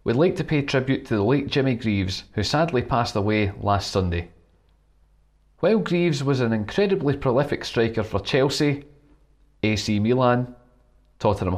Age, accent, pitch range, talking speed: 40-59, British, 95-135 Hz, 145 wpm